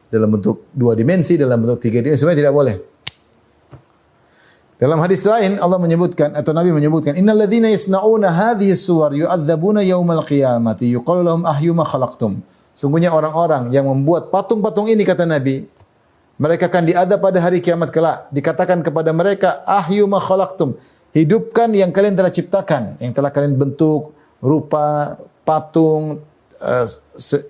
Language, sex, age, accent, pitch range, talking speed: Indonesian, male, 30-49, native, 145-190 Hz, 135 wpm